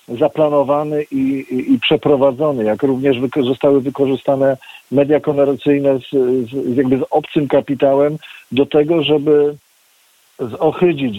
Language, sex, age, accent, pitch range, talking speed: Polish, male, 50-69, native, 125-150 Hz, 115 wpm